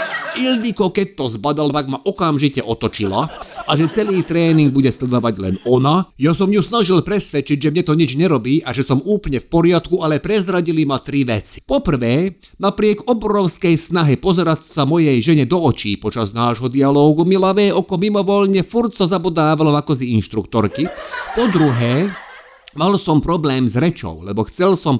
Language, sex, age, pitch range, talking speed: Slovak, male, 50-69, 130-185 Hz, 170 wpm